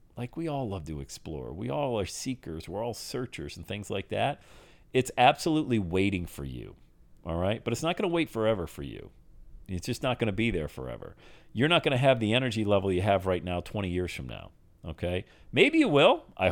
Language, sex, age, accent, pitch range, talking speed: English, male, 40-59, American, 85-135 Hz, 225 wpm